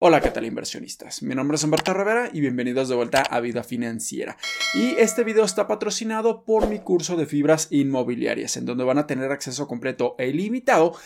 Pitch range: 150-215 Hz